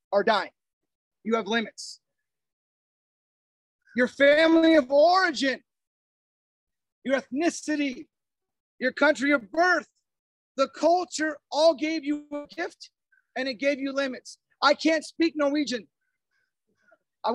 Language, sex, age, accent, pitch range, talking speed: English, male, 40-59, American, 270-325 Hz, 110 wpm